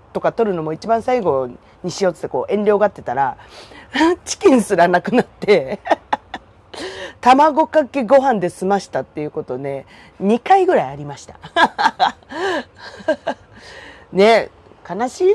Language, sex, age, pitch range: Japanese, female, 40-59, 175-260 Hz